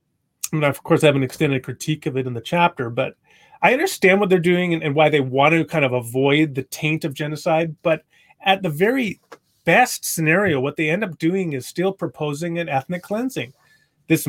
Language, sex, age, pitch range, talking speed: English, male, 30-49, 140-170 Hz, 205 wpm